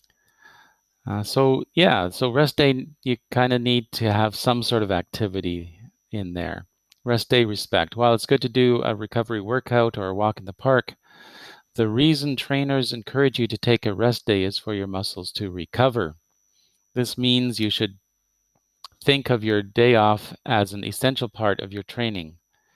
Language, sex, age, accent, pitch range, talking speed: English, male, 40-59, American, 100-120 Hz, 175 wpm